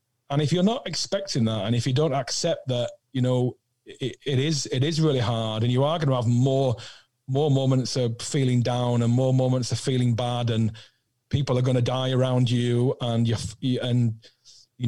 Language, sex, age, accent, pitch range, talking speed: English, male, 30-49, British, 120-140 Hz, 205 wpm